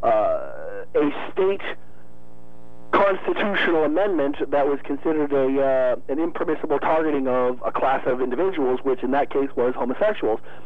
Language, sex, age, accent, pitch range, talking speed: English, male, 50-69, American, 135-160 Hz, 135 wpm